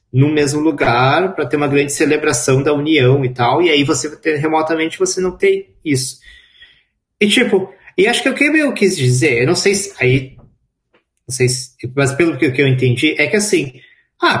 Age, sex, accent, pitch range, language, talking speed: 20-39, male, Brazilian, 135-215 Hz, Portuguese, 195 wpm